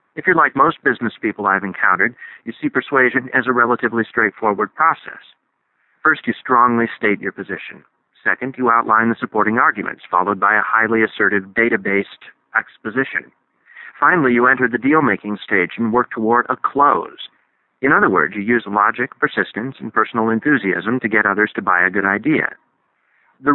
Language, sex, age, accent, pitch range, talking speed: English, male, 40-59, American, 110-135 Hz, 165 wpm